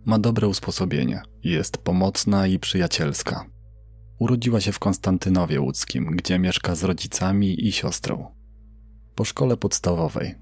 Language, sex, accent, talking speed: Polish, male, native, 120 wpm